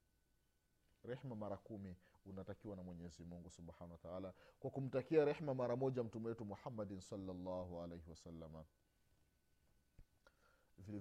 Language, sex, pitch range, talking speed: Swahili, male, 95-145 Hz, 125 wpm